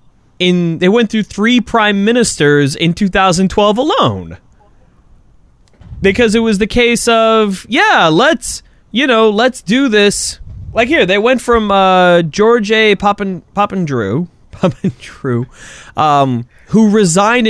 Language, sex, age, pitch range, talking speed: English, male, 20-39, 135-205 Hz, 130 wpm